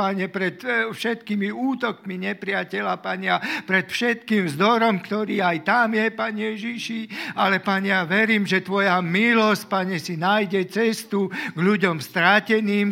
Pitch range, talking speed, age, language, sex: 140-195 Hz, 135 wpm, 50-69, Slovak, male